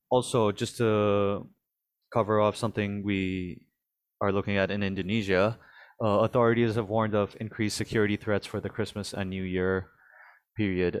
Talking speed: 145 wpm